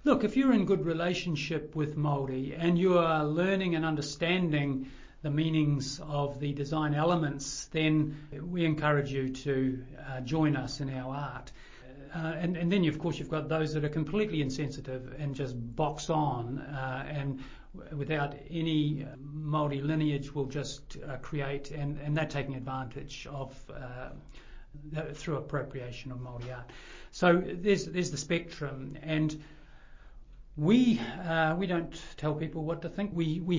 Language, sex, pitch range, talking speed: English, male, 140-160 Hz, 165 wpm